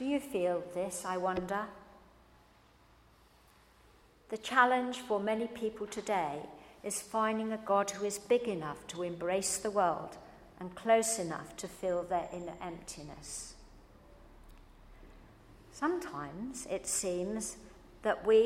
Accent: British